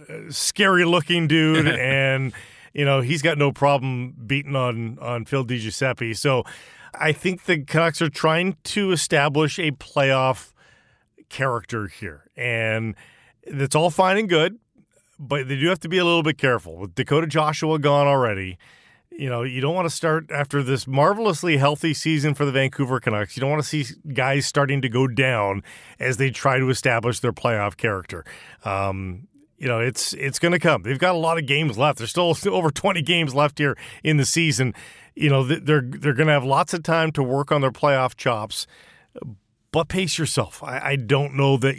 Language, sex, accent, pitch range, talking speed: English, male, American, 130-165 Hz, 190 wpm